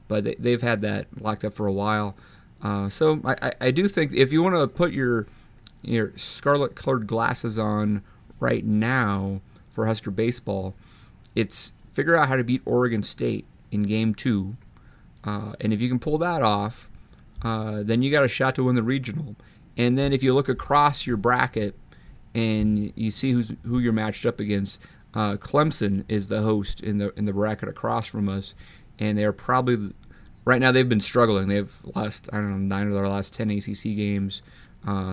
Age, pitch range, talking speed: 30-49, 100-125 Hz, 190 wpm